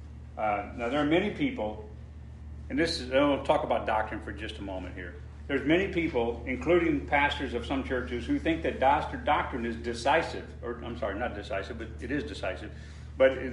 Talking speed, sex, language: 175 wpm, male, English